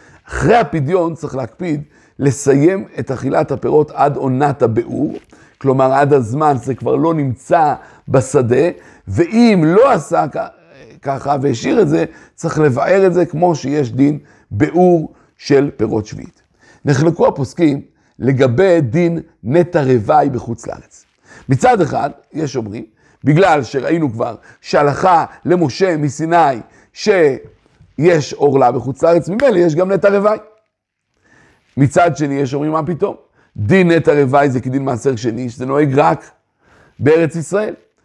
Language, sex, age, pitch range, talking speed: Hebrew, male, 60-79, 135-170 Hz, 130 wpm